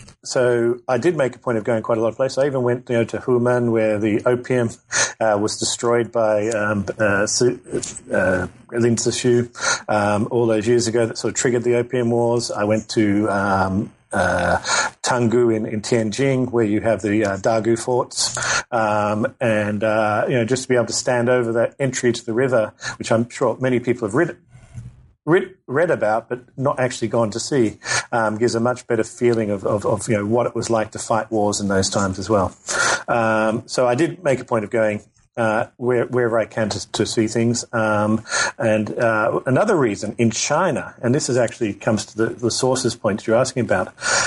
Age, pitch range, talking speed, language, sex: 40-59, 110-125 Hz, 205 wpm, English, male